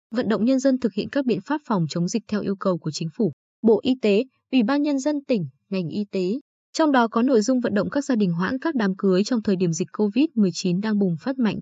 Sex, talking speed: female, 270 wpm